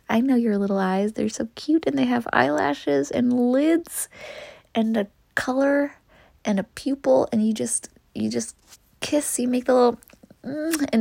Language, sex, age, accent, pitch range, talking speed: English, female, 20-39, American, 245-335 Hz, 160 wpm